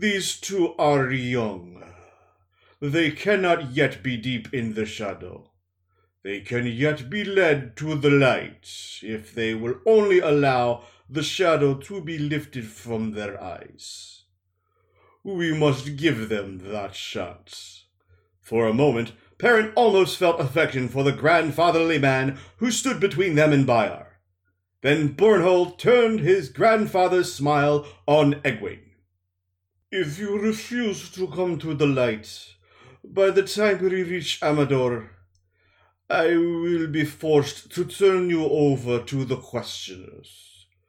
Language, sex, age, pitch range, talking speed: English, male, 50-69, 105-165 Hz, 130 wpm